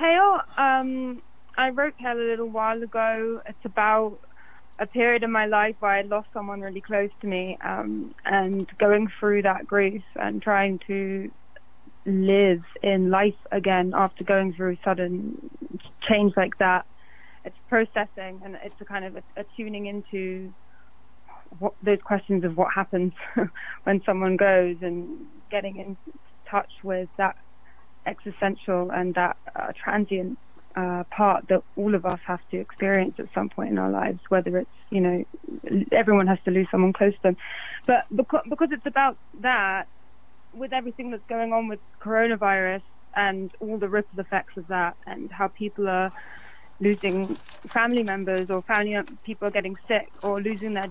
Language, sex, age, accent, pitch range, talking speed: English, female, 20-39, British, 190-220 Hz, 160 wpm